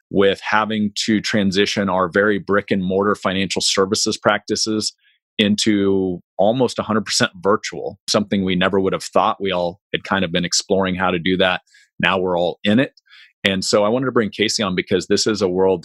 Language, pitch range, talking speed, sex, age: English, 90-105 Hz, 195 wpm, male, 30-49